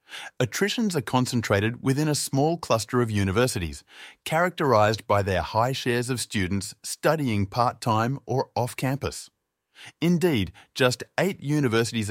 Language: English